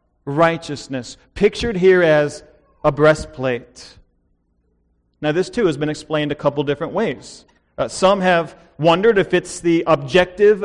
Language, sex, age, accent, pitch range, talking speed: English, male, 40-59, American, 155-205 Hz, 135 wpm